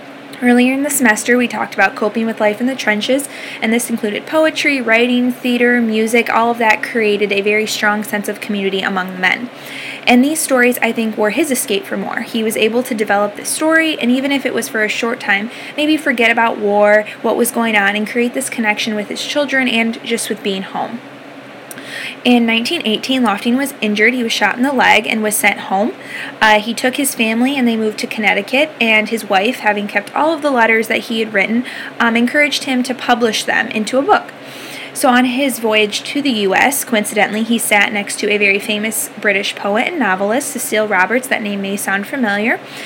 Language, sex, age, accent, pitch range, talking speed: English, female, 10-29, American, 210-250 Hz, 215 wpm